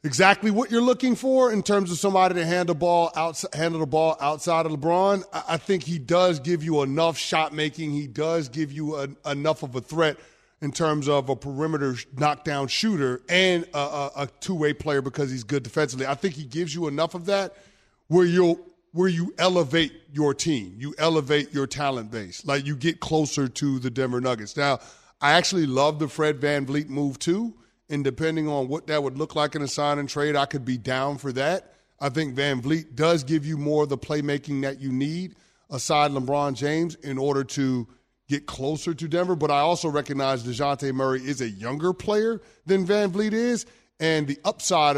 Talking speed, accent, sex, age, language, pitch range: 195 wpm, American, male, 30-49, English, 140-170 Hz